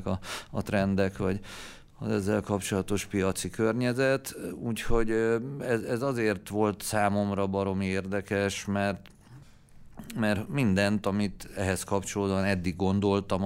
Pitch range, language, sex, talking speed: 90-110 Hz, Hungarian, male, 110 wpm